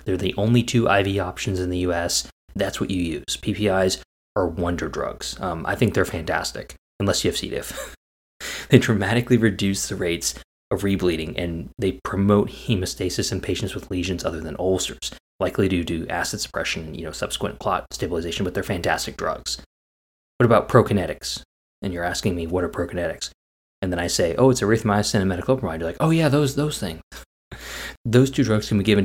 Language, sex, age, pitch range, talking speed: English, male, 20-39, 85-105 Hz, 190 wpm